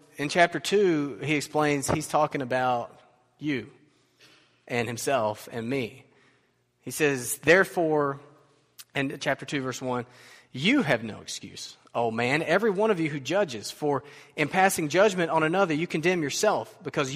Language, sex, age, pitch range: English, male, 30-49, 130-160 Hz